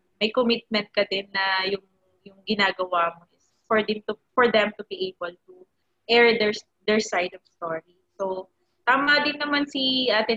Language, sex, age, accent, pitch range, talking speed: Filipino, female, 20-39, native, 190-225 Hz, 180 wpm